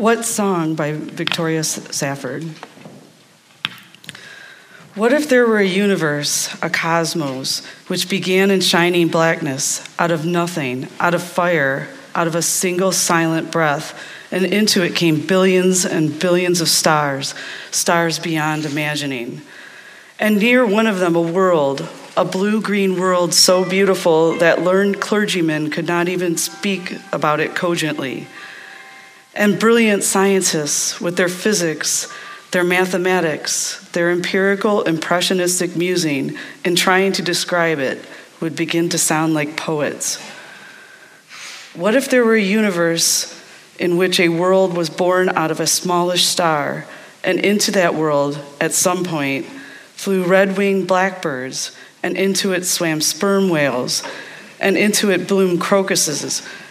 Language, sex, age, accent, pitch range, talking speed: English, female, 40-59, American, 165-195 Hz, 130 wpm